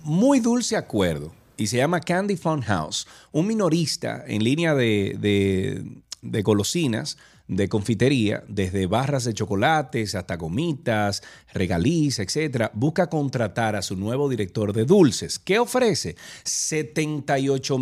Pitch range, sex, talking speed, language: 100-135 Hz, male, 130 wpm, Spanish